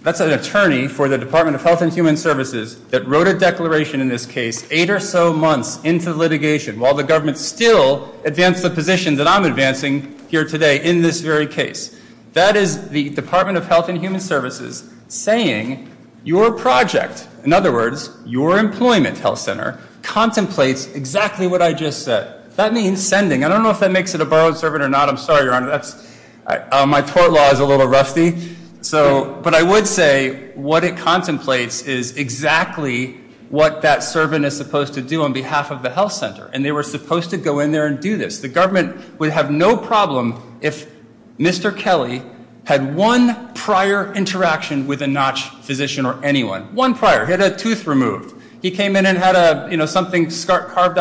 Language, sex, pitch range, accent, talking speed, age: English, male, 140-185 Hz, American, 195 wpm, 40-59